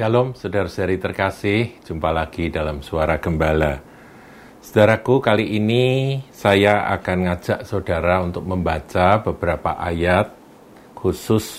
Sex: male